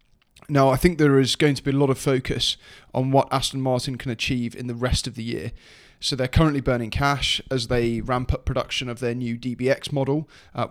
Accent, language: British, English